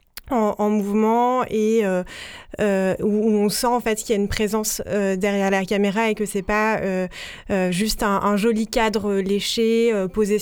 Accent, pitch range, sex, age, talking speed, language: French, 195-225 Hz, female, 20-39, 195 wpm, French